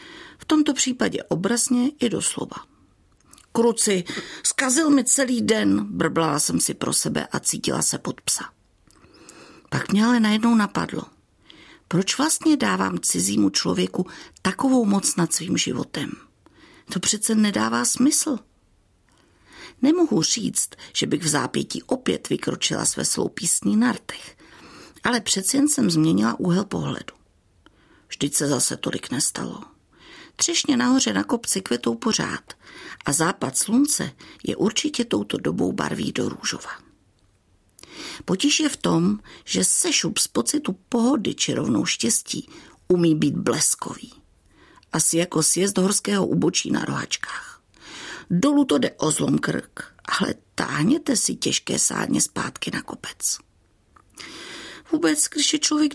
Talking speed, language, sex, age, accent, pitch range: 130 wpm, Czech, female, 50-69, native, 185-295 Hz